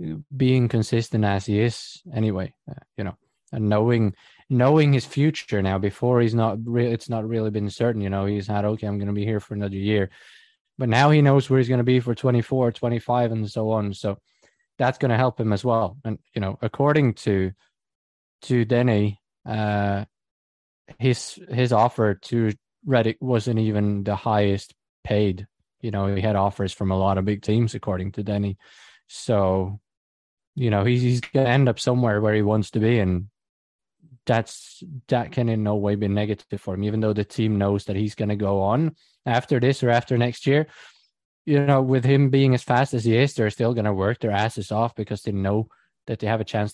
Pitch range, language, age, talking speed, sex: 100-125 Hz, English, 20-39, 200 wpm, male